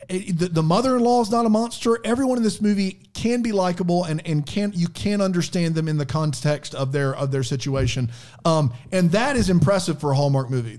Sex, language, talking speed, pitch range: male, English, 215 wpm, 145-205 Hz